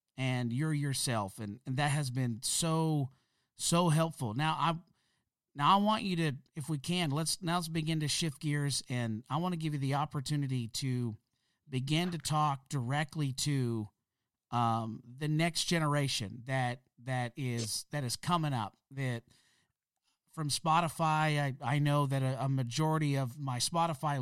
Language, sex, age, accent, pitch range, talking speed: English, male, 50-69, American, 115-150 Hz, 165 wpm